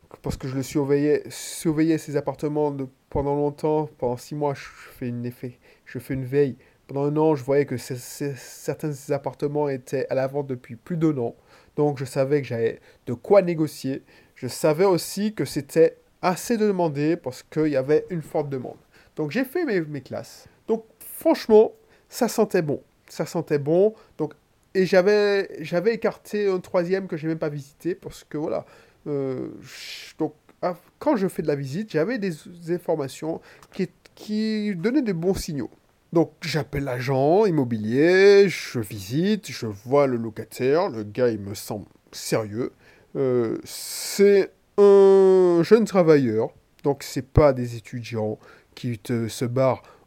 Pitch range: 130-180 Hz